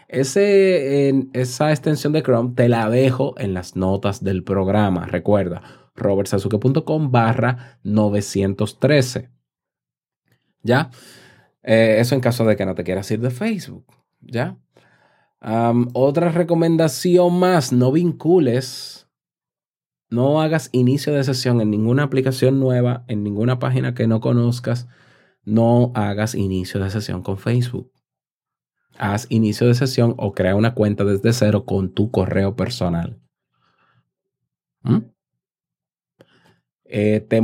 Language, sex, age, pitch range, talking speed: Spanish, male, 30-49, 105-130 Hz, 120 wpm